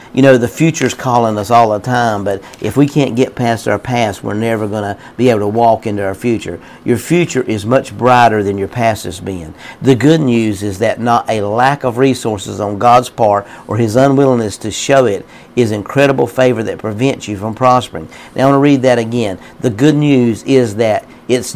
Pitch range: 110-130 Hz